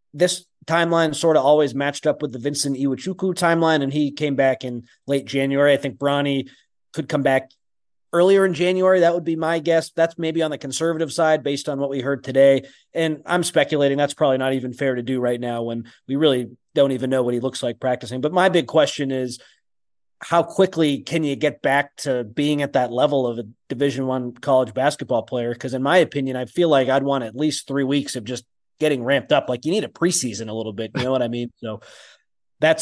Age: 30-49